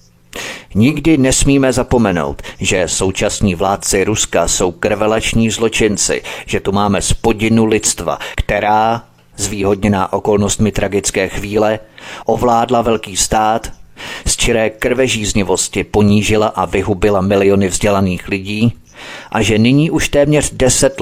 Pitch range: 95-120 Hz